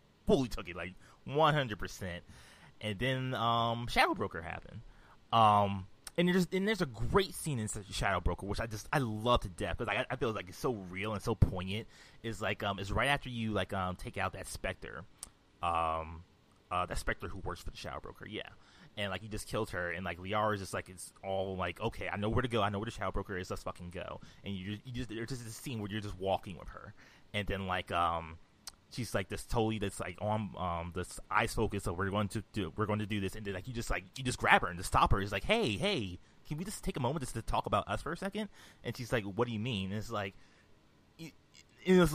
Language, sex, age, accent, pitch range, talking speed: English, male, 20-39, American, 95-125 Hz, 260 wpm